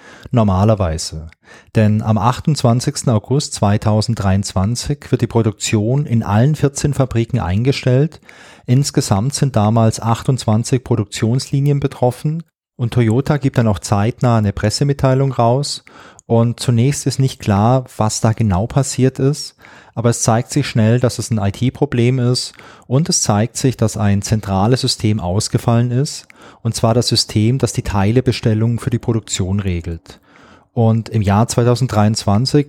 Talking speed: 135 wpm